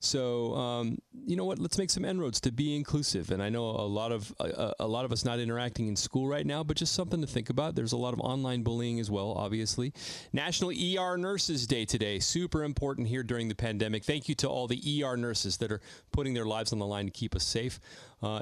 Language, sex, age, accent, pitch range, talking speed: English, male, 30-49, American, 110-140 Hz, 245 wpm